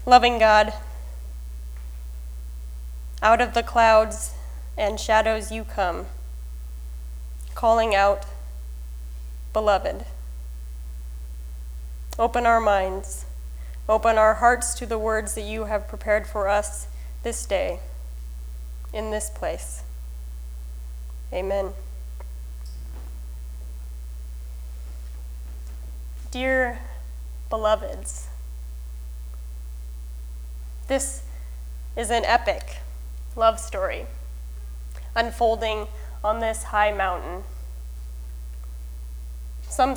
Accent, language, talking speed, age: American, English, 70 wpm, 20-39